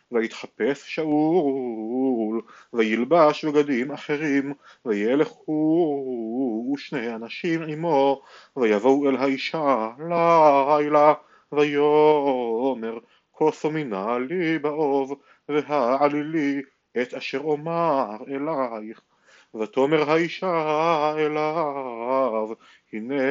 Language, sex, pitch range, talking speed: Hebrew, male, 130-155 Hz, 70 wpm